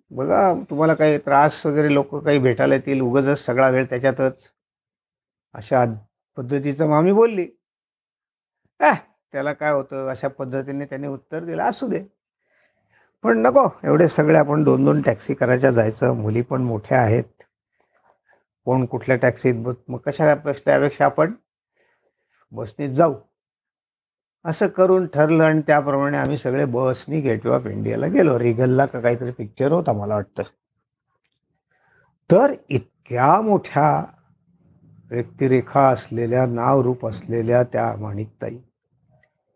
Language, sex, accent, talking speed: Marathi, male, native, 70 wpm